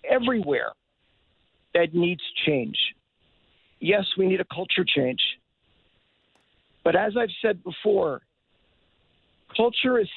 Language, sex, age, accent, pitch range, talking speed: English, male, 50-69, American, 165-210 Hz, 100 wpm